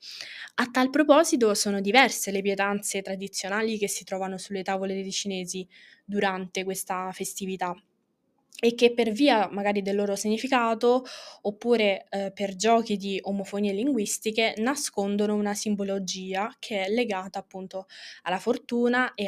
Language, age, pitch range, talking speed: Italian, 20-39, 195-235 Hz, 135 wpm